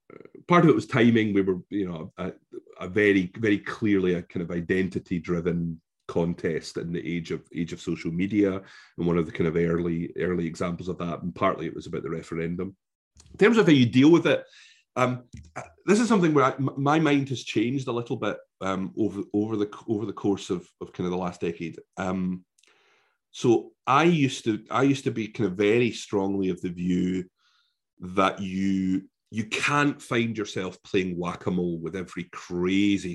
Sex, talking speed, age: male, 195 wpm, 30-49